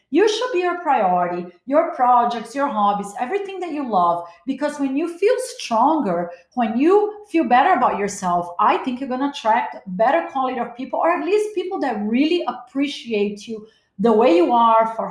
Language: English